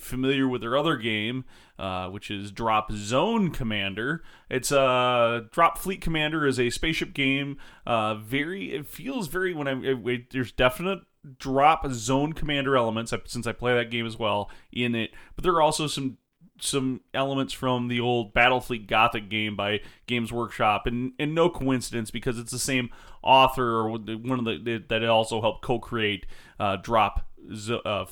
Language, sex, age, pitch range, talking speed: English, male, 30-49, 115-135 Hz, 170 wpm